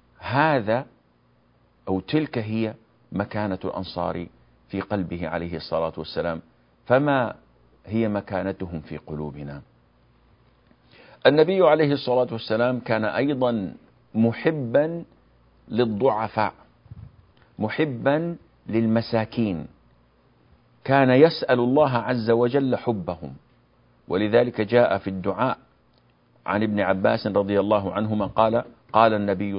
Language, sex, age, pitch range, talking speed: Arabic, male, 50-69, 85-135 Hz, 90 wpm